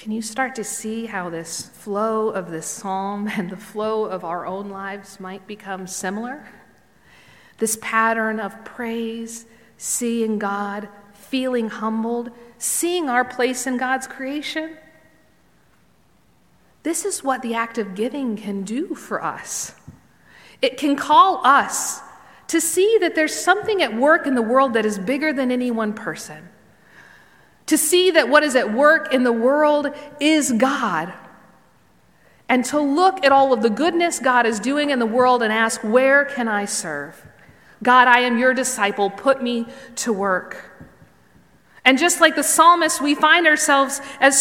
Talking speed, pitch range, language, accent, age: 160 wpm, 220-310 Hz, English, American, 50-69